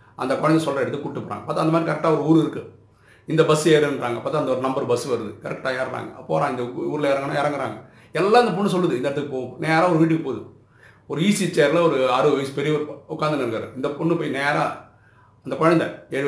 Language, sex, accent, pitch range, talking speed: Tamil, male, native, 120-165 Hz, 205 wpm